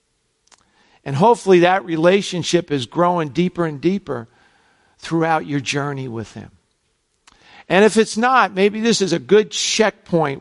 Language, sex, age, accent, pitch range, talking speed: English, male, 50-69, American, 130-170 Hz, 140 wpm